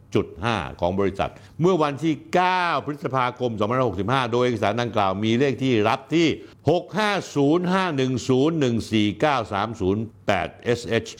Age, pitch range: 60-79, 115-170 Hz